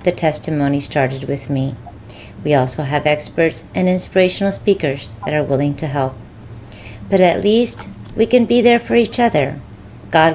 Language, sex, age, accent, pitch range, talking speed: English, female, 40-59, American, 110-175 Hz, 160 wpm